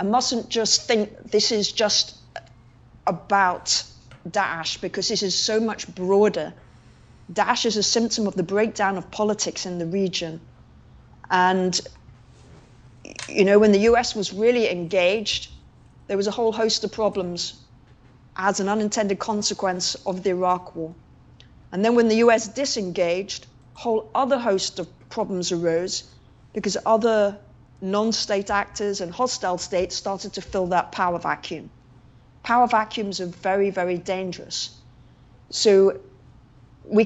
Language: English